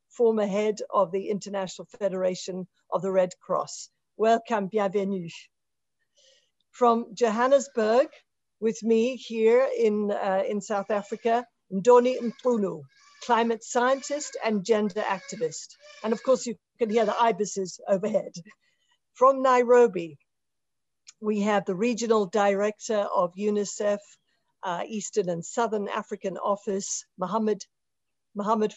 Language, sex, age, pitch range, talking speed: English, female, 50-69, 190-235 Hz, 115 wpm